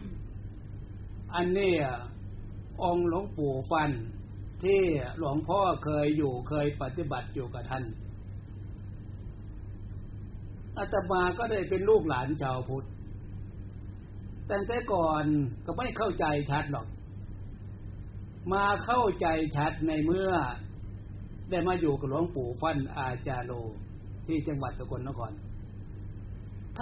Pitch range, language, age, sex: 100-155 Hz, Thai, 60-79, male